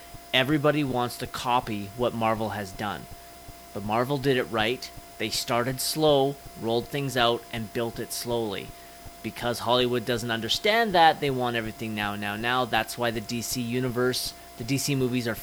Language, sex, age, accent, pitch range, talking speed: English, male, 30-49, American, 115-135 Hz, 165 wpm